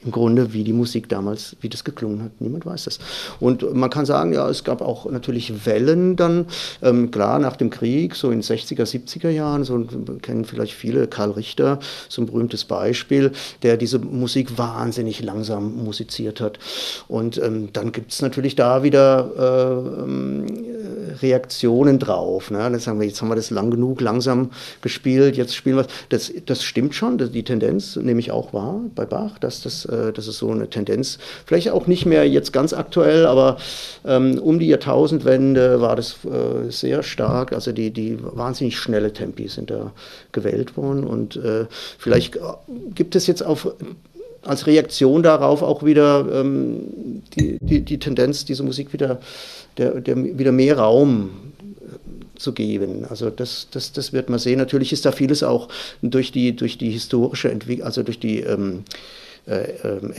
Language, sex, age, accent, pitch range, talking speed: German, male, 50-69, German, 115-140 Hz, 175 wpm